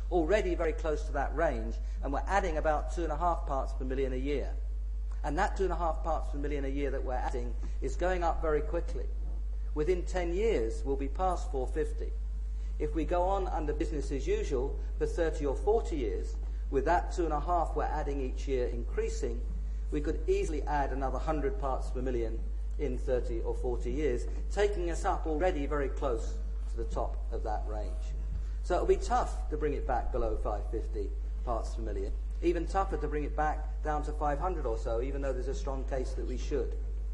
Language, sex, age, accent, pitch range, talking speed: English, male, 50-69, British, 120-195 Hz, 205 wpm